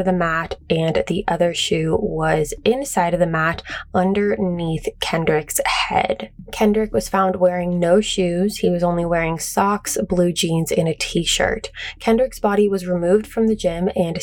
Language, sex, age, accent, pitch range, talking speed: English, female, 20-39, American, 175-205 Hz, 160 wpm